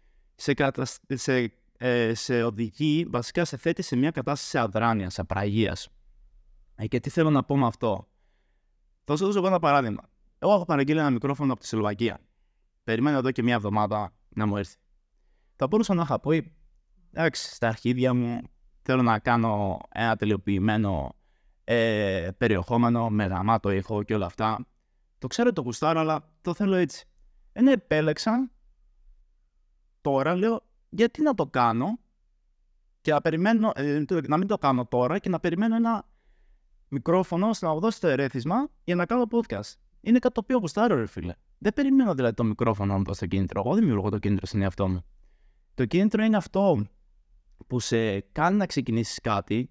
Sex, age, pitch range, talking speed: male, 30-49, 105-165 Hz, 160 wpm